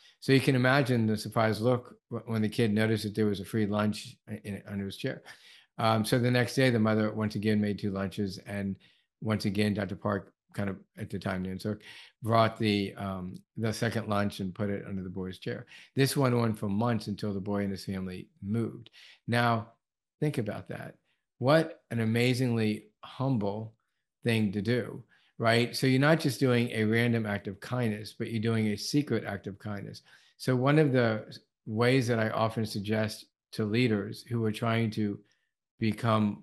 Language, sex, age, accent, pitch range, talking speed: English, male, 50-69, American, 105-125 Hz, 190 wpm